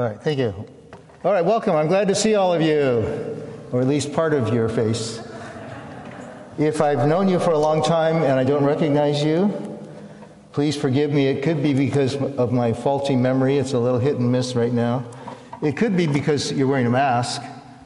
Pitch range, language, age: 120-155 Hz, English, 60-79